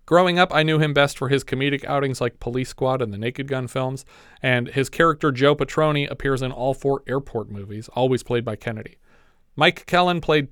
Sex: male